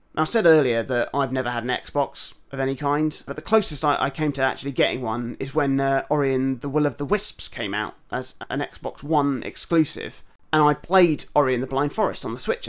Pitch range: 135-160 Hz